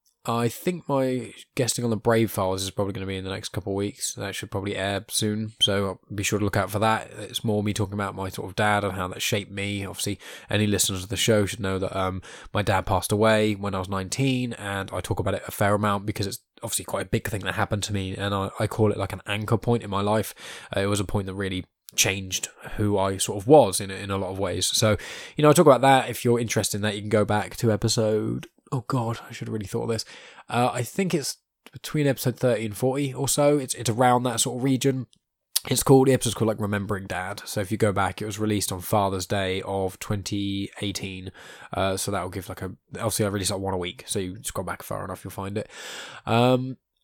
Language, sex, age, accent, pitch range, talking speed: English, male, 10-29, British, 100-120 Hz, 260 wpm